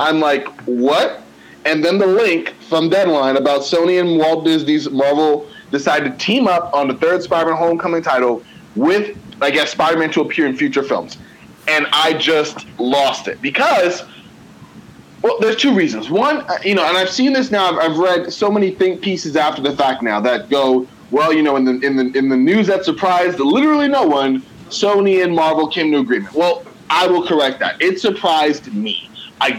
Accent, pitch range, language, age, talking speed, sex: American, 140-185 Hz, English, 30-49, 185 wpm, male